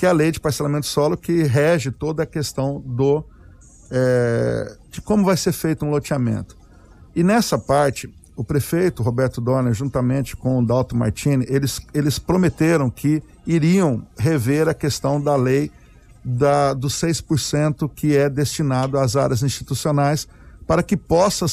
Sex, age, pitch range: male, 50-69, 125-170 Hz